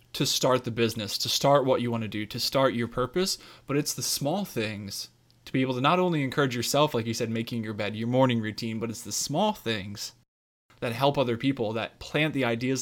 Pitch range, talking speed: 115-140 Hz, 235 wpm